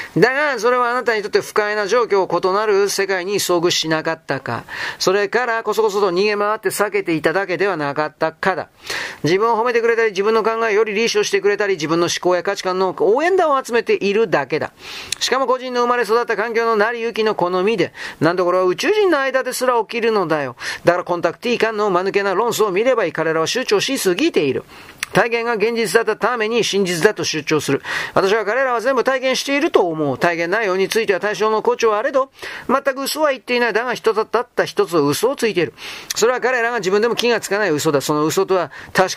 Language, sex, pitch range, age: Japanese, male, 180-235 Hz, 40-59